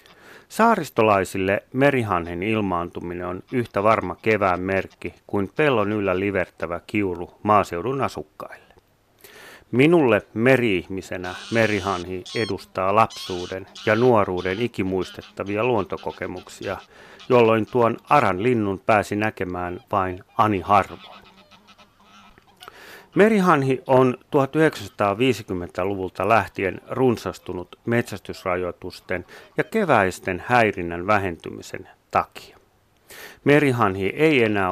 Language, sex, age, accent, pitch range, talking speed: Finnish, male, 30-49, native, 95-125 Hz, 80 wpm